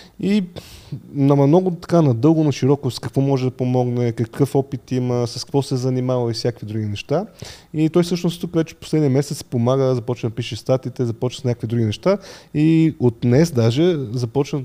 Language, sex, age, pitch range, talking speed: Bulgarian, male, 20-39, 115-145 Hz, 180 wpm